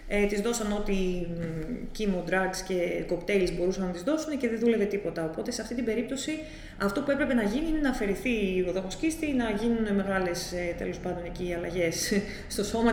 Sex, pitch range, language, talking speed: female, 195-255 Hz, Greek, 195 wpm